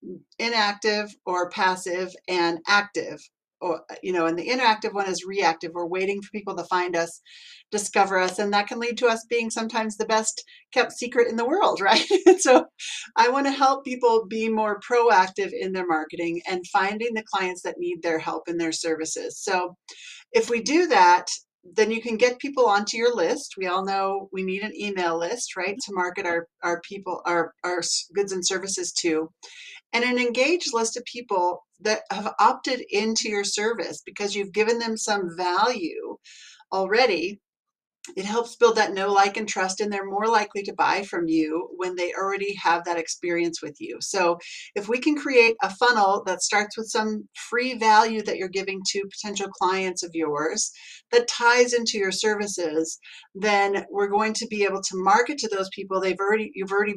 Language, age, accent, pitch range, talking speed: English, 40-59, American, 185-235 Hz, 190 wpm